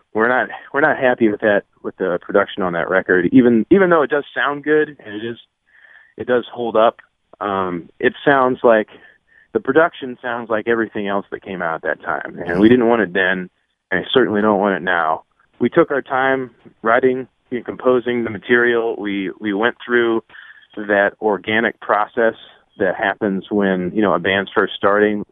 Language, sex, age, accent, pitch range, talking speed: English, male, 30-49, American, 100-120 Hz, 195 wpm